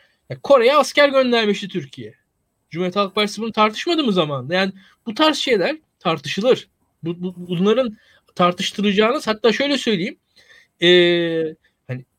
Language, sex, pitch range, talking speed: Turkish, male, 180-255 Hz, 115 wpm